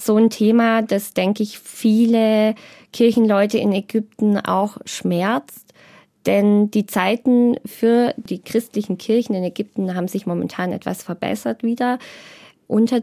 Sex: female